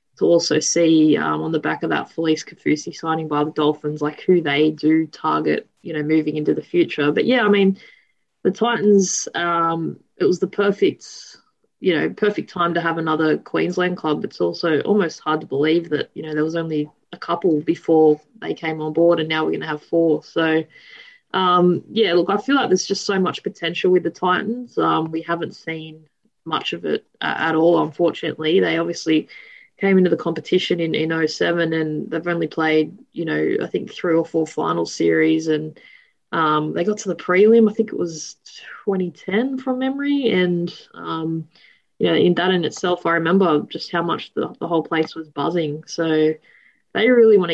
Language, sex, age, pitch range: English, female, 20-39, 155-185 Hz